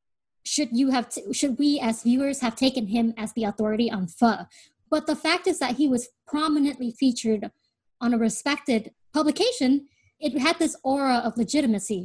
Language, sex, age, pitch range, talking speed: English, female, 20-39, 225-280 Hz, 175 wpm